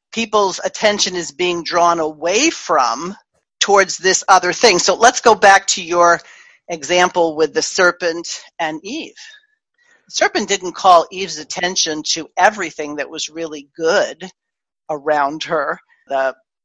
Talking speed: 135 wpm